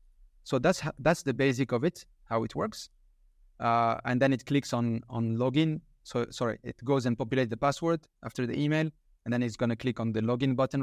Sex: male